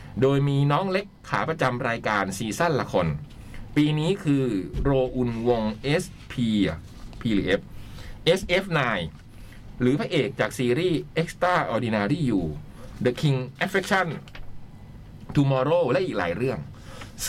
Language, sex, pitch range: Thai, male, 115-175 Hz